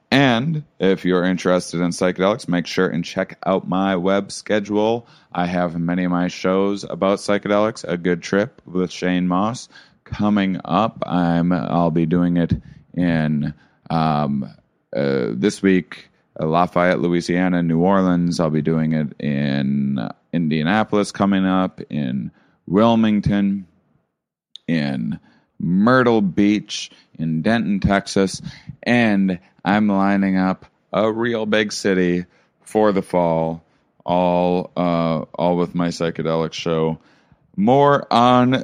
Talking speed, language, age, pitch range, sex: 125 wpm, English, 30-49, 85-105 Hz, male